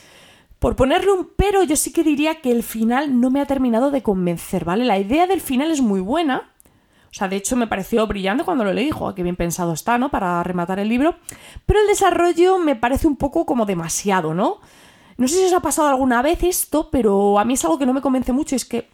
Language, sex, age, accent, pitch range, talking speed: Spanish, female, 20-39, Spanish, 205-285 Hz, 240 wpm